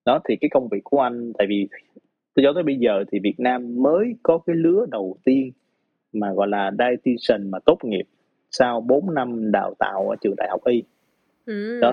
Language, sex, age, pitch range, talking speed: Vietnamese, male, 20-39, 105-145 Hz, 205 wpm